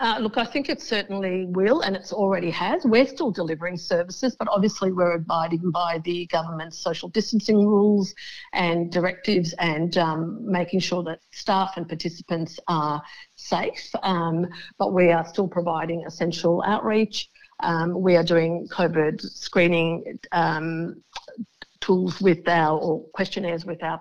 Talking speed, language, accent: 145 wpm, English, Australian